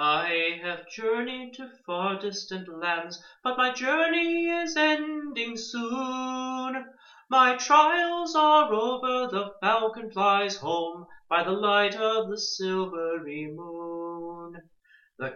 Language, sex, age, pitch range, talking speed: English, male, 30-49, 175-255 Hz, 115 wpm